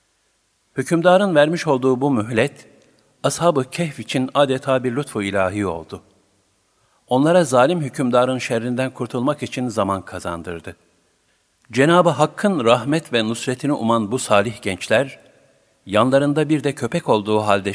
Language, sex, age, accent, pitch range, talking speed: Turkish, male, 50-69, native, 100-135 Hz, 120 wpm